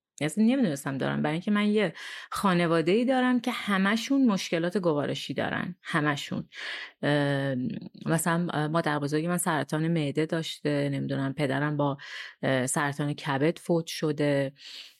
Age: 30-49